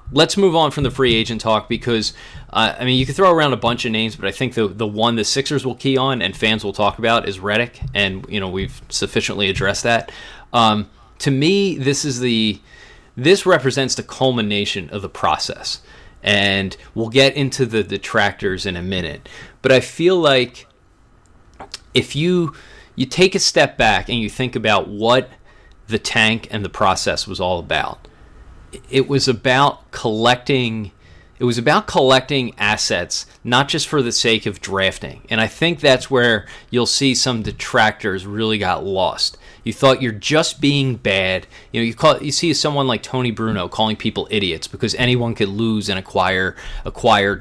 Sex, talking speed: male, 185 wpm